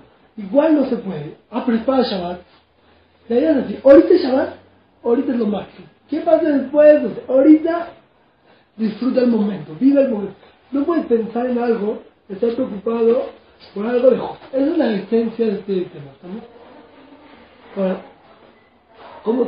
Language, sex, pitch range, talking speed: Spanish, male, 215-265 Hz, 155 wpm